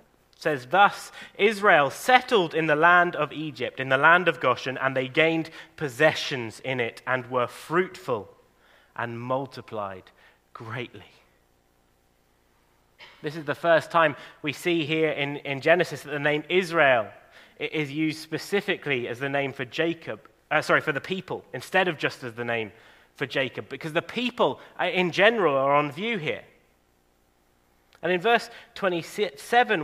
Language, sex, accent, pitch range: English, male, British, 120-170 Hz